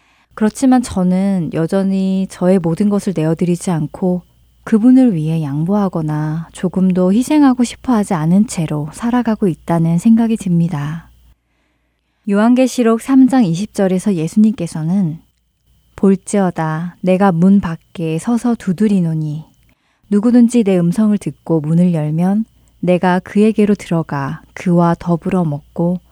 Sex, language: female, Korean